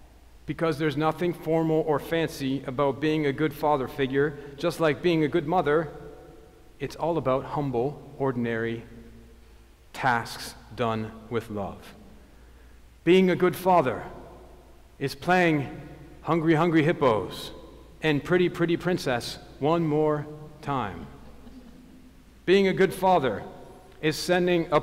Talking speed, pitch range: 120 wpm, 125-160 Hz